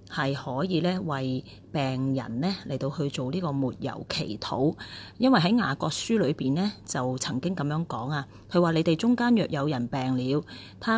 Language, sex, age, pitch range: Chinese, female, 30-49, 130-175 Hz